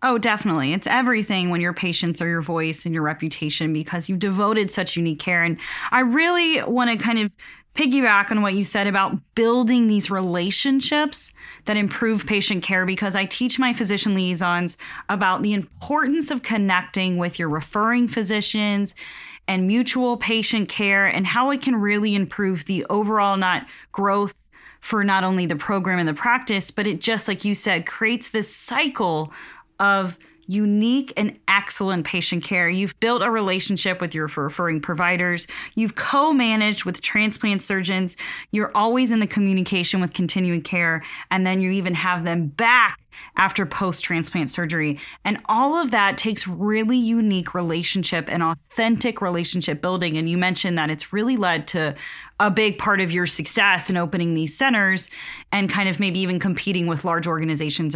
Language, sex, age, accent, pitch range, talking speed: English, female, 30-49, American, 175-215 Hz, 165 wpm